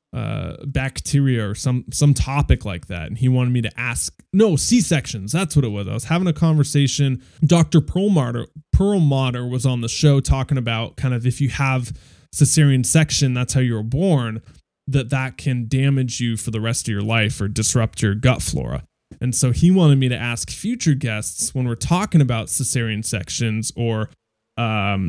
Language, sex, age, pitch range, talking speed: English, male, 20-39, 115-145 Hz, 190 wpm